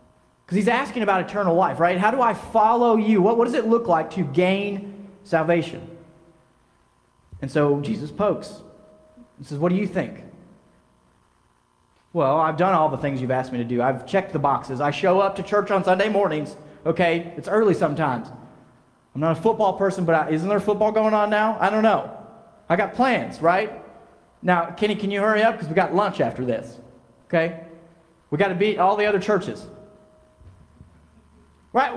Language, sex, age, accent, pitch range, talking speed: English, male, 30-49, American, 150-210 Hz, 190 wpm